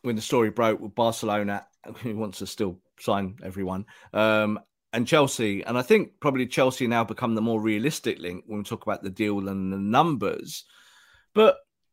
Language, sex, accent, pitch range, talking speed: English, male, British, 115-160 Hz, 180 wpm